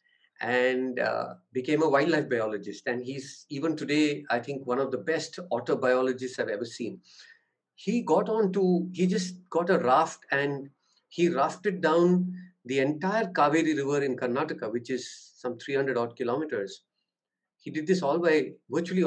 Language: English